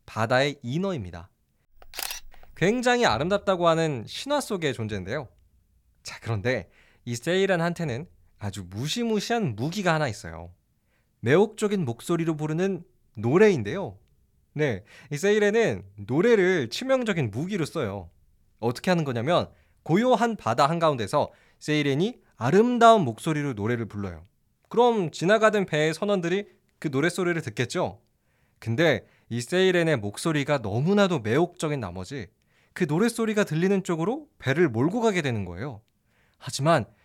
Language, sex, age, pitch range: Korean, male, 20-39, 115-185 Hz